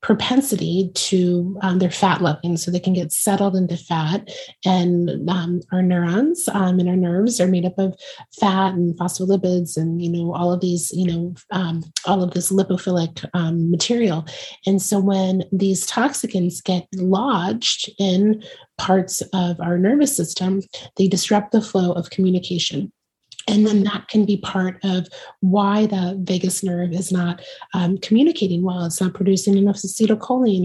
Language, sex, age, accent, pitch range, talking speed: English, female, 30-49, American, 180-195 Hz, 160 wpm